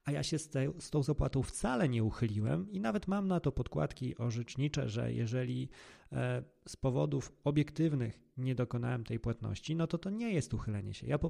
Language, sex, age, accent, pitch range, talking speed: Polish, male, 30-49, native, 115-145 Hz, 185 wpm